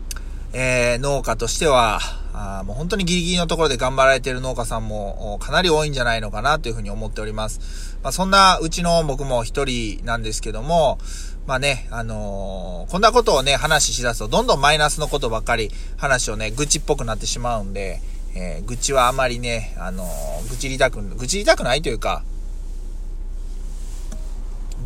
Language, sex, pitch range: Japanese, male, 90-145 Hz